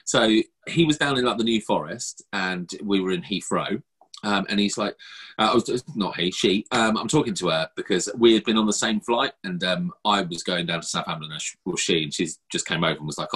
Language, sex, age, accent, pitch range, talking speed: English, male, 30-49, British, 100-140 Hz, 255 wpm